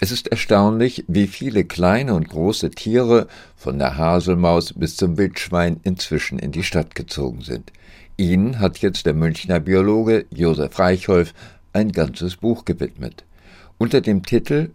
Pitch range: 85-105 Hz